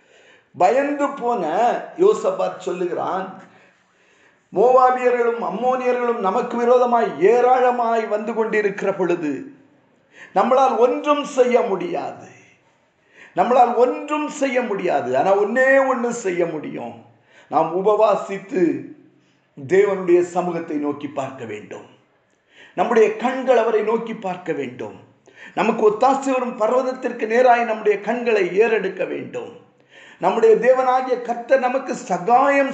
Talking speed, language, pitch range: 90 wpm, Tamil, 190-255 Hz